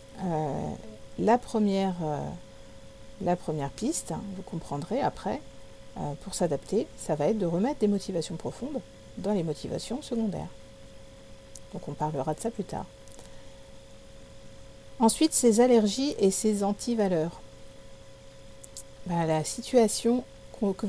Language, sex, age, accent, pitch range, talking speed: French, female, 50-69, French, 135-215 Hz, 125 wpm